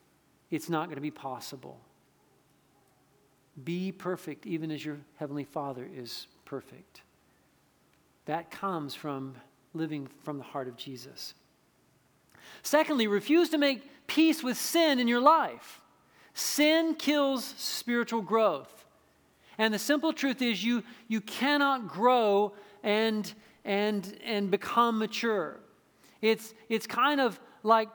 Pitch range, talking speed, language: 185-235 Hz, 120 wpm, English